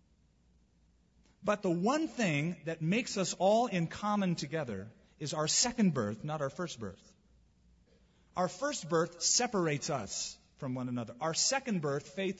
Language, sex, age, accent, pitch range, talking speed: English, male, 40-59, American, 135-195 Hz, 150 wpm